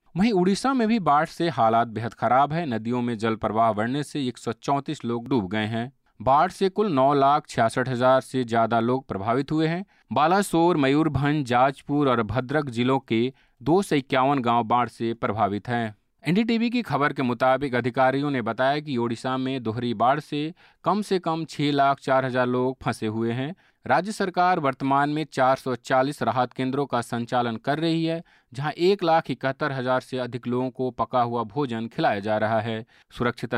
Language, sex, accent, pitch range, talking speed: Hindi, male, native, 120-150 Hz, 175 wpm